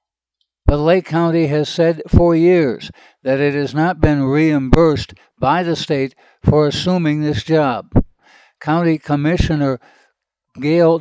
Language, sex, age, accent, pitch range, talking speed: English, male, 60-79, American, 135-165 Hz, 125 wpm